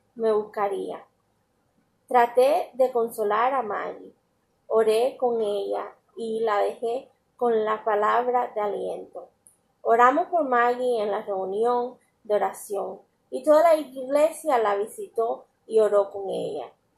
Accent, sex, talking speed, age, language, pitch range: American, female, 125 wpm, 30-49, Spanish, 215-260 Hz